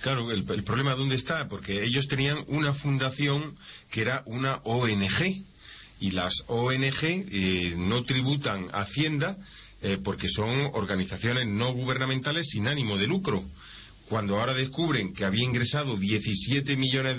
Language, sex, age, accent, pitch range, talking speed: Spanish, male, 40-59, Spanish, 105-135 Hz, 135 wpm